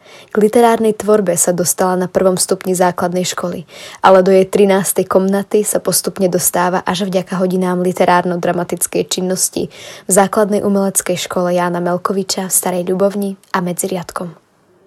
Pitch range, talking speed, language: 180-205 Hz, 135 wpm, Slovak